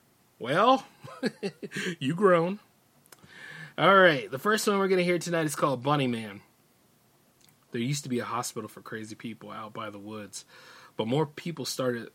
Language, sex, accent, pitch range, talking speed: English, male, American, 125-155 Hz, 165 wpm